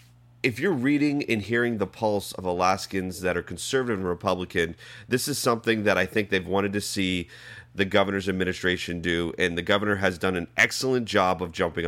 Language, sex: English, male